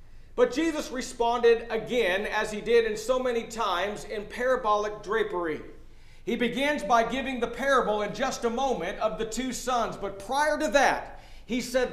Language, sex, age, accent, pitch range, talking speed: English, male, 50-69, American, 225-280 Hz, 170 wpm